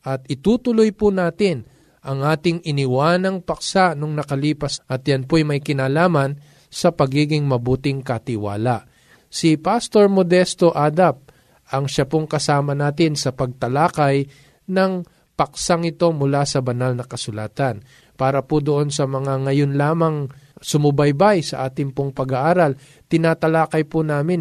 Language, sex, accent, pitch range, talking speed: Filipino, male, native, 135-170 Hz, 130 wpm